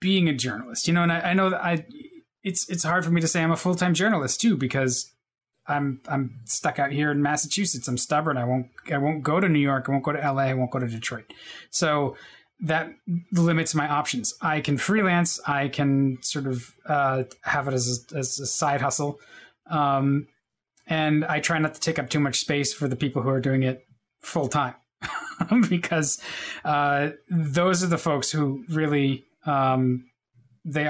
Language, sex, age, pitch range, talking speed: English, male, 20-39, 135-170 Hz, 195 wpm